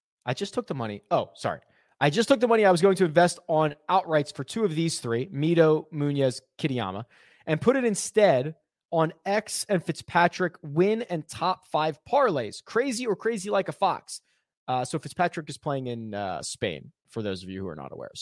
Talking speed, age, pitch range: 205 wpm, 20-39, 125-175 Hz